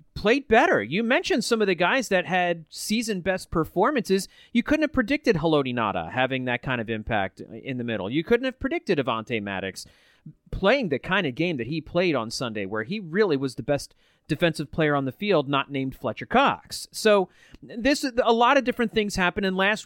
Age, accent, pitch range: 30-49, American, 140-215 Hz